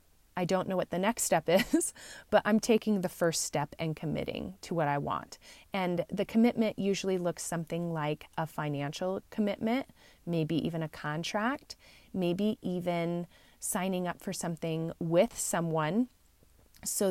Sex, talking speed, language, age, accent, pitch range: female, 150 wpm, English, 30-49, American, 165-195 Hz